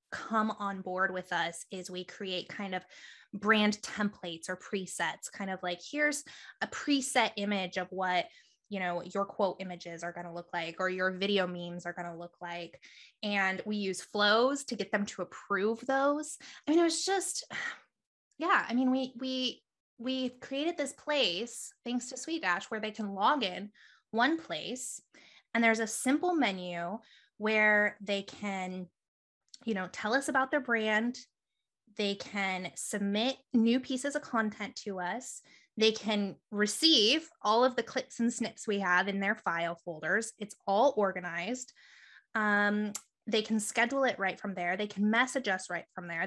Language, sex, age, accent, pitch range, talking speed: English, female, 20-39, American, 195-260 Hz, 170 wpm